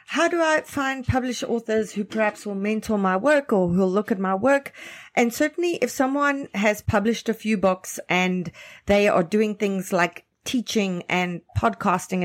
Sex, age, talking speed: female, 40-59, 175 wpm